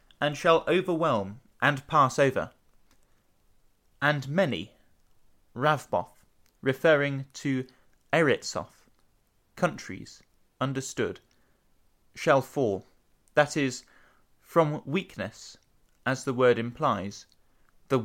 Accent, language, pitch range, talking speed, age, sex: British, English, 110-155 Hz, 85 wpm, 30-49, male